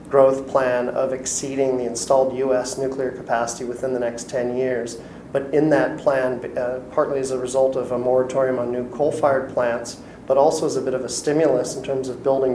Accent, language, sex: American, English, male